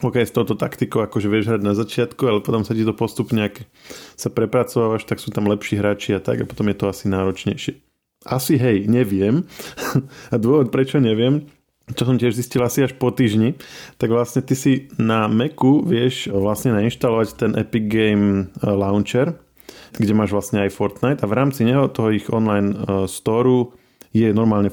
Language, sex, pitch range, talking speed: Slovak, male, 105-125 Hz, 180 wpm